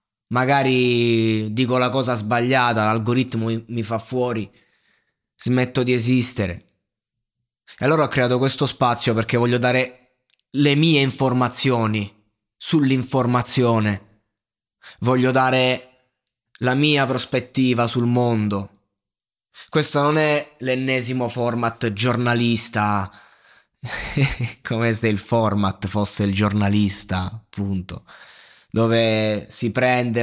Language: Italian